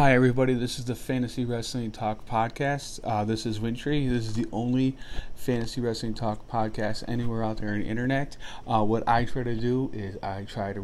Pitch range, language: 105-120 Hz, English